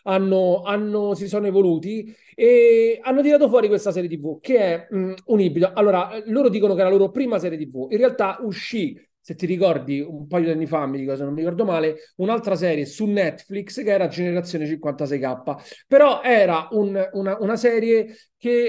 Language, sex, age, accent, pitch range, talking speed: Italian, male, 30-49, native, 150-205 Hz, 190 wpm